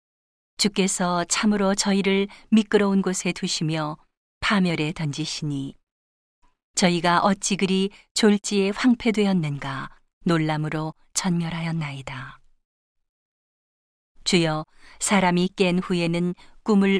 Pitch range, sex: 165-200 Hz, female